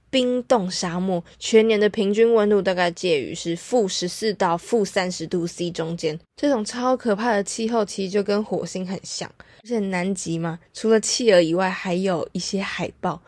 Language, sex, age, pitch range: Chinese, female, 20-39, 180-220 Hz